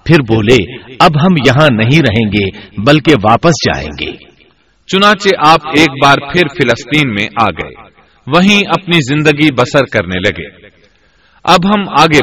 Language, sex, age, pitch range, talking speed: Urdu, male, 40-59, 120-165 Hz, 135 wpm